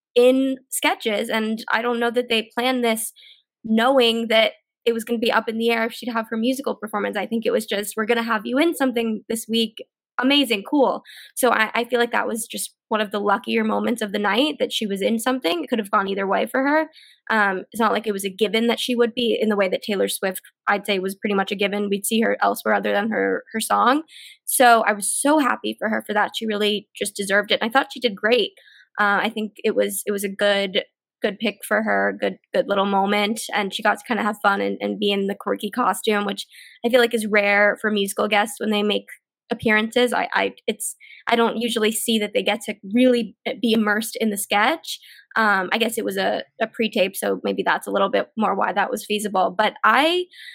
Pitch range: 210-240 Hz